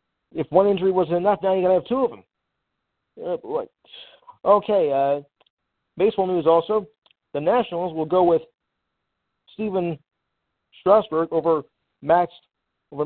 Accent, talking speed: American, 140 wpm